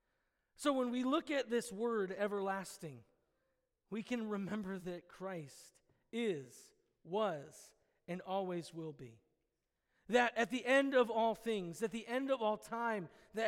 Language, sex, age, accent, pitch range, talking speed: English, male, 40-59, American, 185-230 Hz, 145 wpm